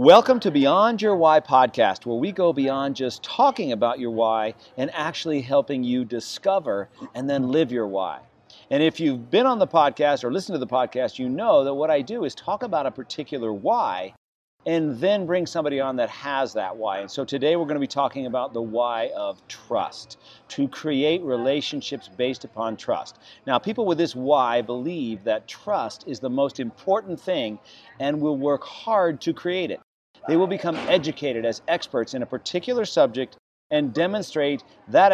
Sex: male